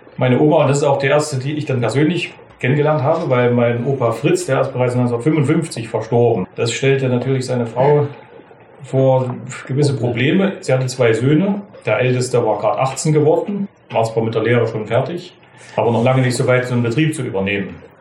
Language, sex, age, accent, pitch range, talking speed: German, male, 40-59, German, 120-150 Hz, 195 wpm